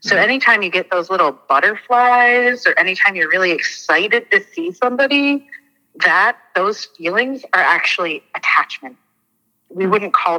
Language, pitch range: English, 150-210 Hz